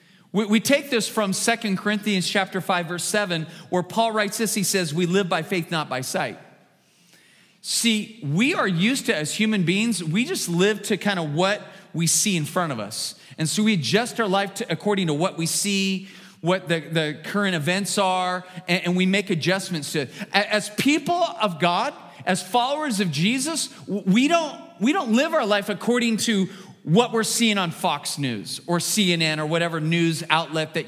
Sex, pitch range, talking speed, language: male, 165-220 Hz, 190 wpm, English